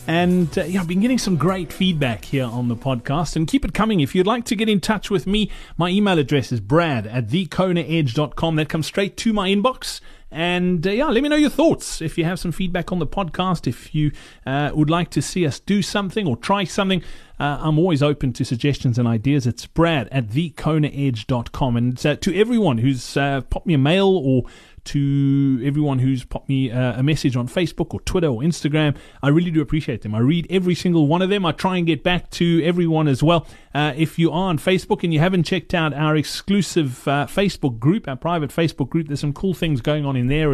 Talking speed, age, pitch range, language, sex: 230 wpm, 30-49, 135-175 Hz, English, male